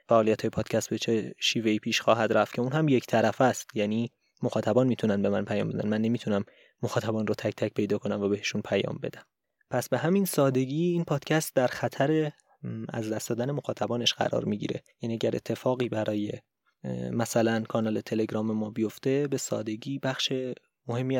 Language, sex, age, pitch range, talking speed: Persian, male, 20-39, 110-130 Hz, 175 wpm